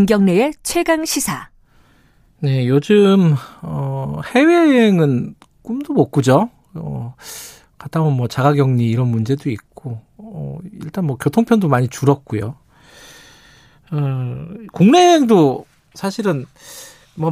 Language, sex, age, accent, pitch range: Korean, male, 40-59, native, 130-195 Hz